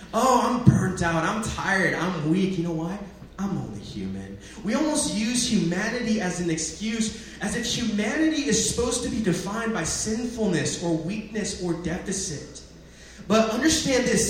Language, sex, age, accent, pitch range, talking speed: English, male, 30-49, American, 165-230 Hz, 160 wpm